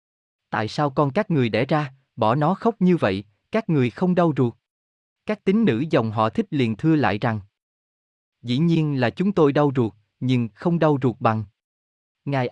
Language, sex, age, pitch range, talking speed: Vietnamese, male, 20-39, 110-160 Hz, 190 wpm